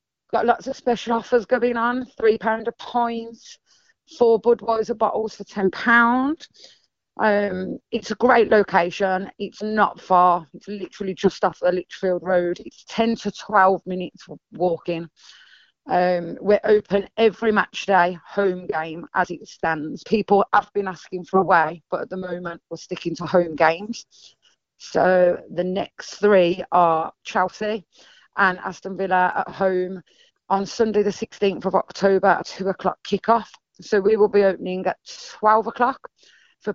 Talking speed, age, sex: 155 wpm, 30-49, female